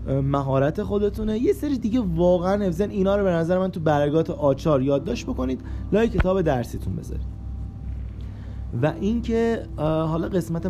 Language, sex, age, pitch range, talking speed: Persian, male, 20-39, 125-175 Hz, 145 wpm